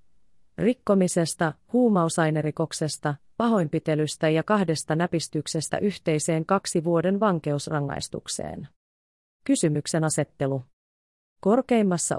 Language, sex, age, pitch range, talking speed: Finnish, female, 30-49, 150-185 Hz, 65 wpm